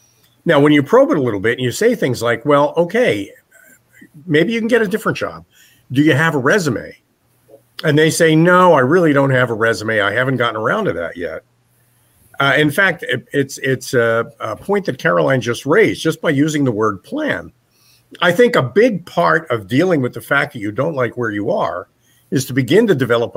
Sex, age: male, 50-69